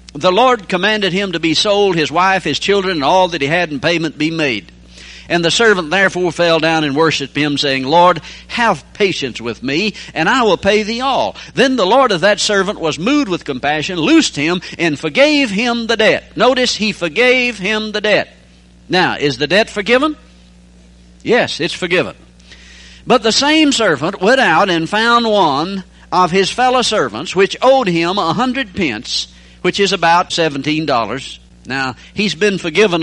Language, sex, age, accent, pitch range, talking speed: English, male, 60-79, American, 150-215 Hz, 180 wpm